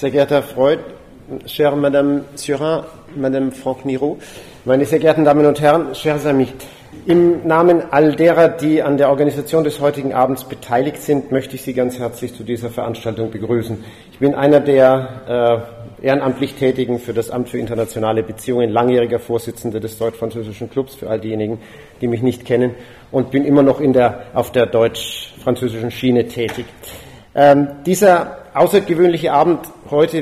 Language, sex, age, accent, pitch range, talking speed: French, male, 40-59, German, 120-145 Hz, 160 wpm